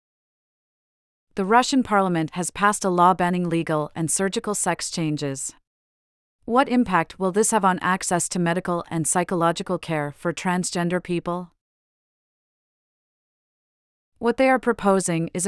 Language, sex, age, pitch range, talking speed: English, female, 40-59, 165-205 Hz, 130 wpm